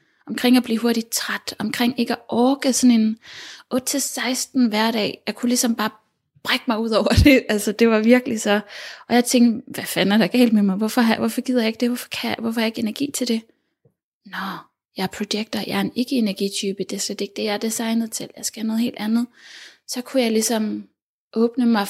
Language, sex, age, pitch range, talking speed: Danish, female, 20-39, 210-245 Hz, 220 wpm